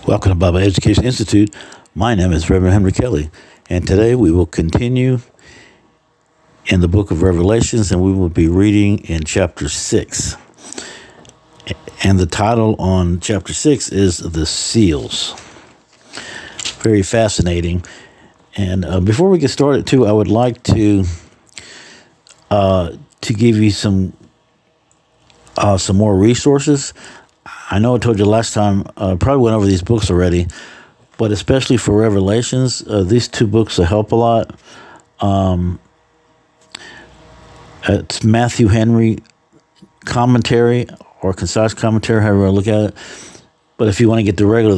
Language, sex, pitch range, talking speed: English, male, 95-115 Hz, 145 wpm